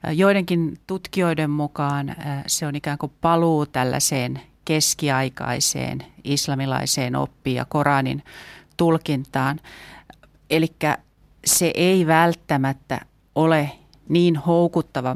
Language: Finnish